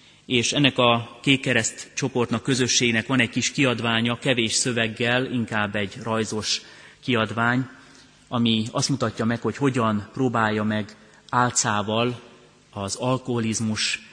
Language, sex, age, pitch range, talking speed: Hungarian, male, 30-49, 110-125 Hz, 115 wpm